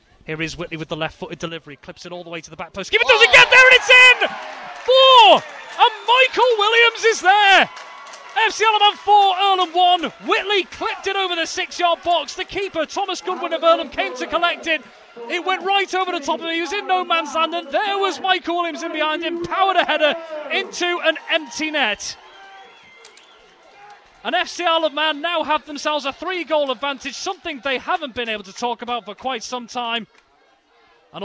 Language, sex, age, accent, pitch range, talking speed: English, male, 30-49, British, 225-365 Hz, 200 wpm